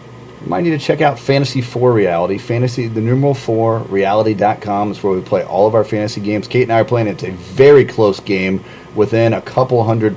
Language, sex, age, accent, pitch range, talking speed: English, male, 30-49, American, 105-130 Hz, 220 wpm